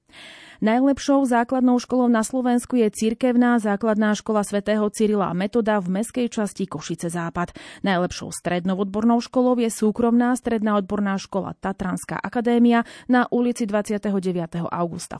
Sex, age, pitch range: female, 30-49, 190-240 Hz